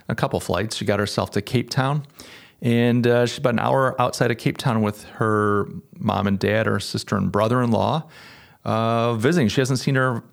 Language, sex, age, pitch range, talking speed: English, male, 40-59, 100-120 Hz, 205 wpm